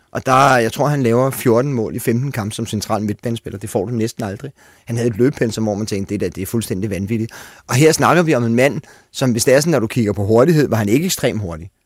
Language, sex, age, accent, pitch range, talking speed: Danish, male, 30-49, native, 105-130 Hz, 285 wpm